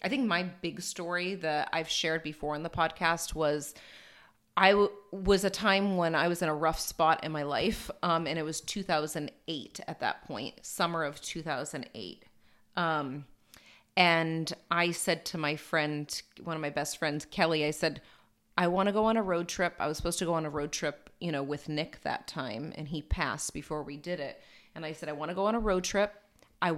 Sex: female